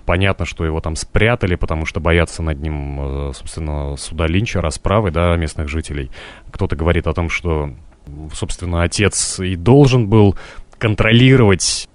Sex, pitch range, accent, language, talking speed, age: male, 85-115 Hz, native, Russian, 140 wpm, 30-49